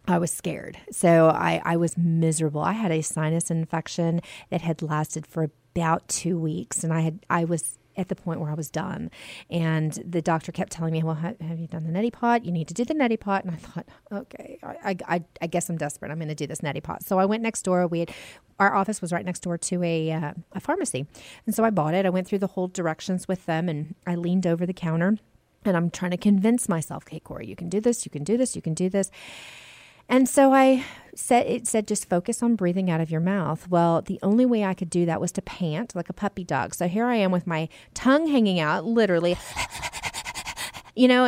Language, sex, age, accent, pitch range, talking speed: English, female, 30-49, American, 170-220 Hz, 245 wpm